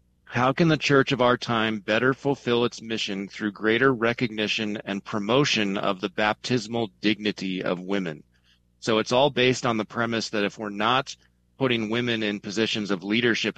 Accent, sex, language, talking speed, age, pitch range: American, male, English, 170 wpm, 40-59, 95-120 Hz